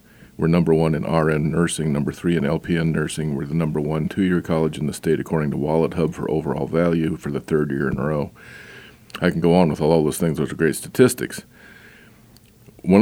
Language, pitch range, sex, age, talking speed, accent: English, 80-100 Hz, male, 40-59, 215 wpm, American